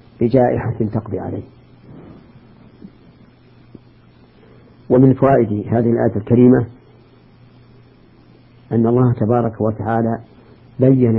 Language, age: Arabic, 50-69